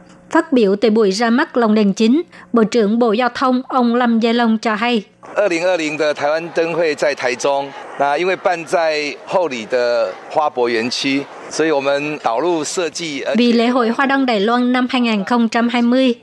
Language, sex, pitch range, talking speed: Vietnamese, male, 210-245 Hz, 105 wpm